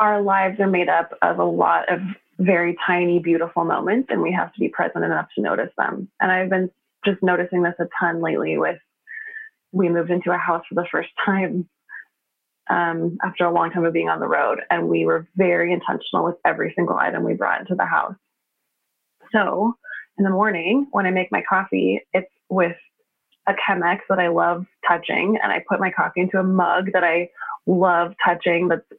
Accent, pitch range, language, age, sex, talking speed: American, 170-200 Hz, English, 20-39, female, 200 wpm